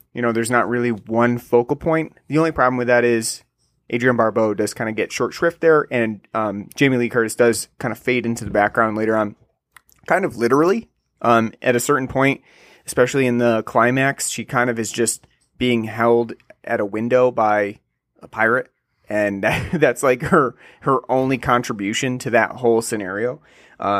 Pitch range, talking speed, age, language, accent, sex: 110-130 Hz, 185 wpm, 30-49, English, American, male